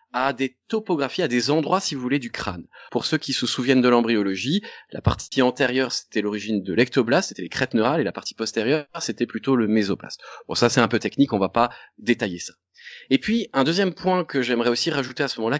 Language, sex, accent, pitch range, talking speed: French, male, French, 120-160 Hz, 235 wpm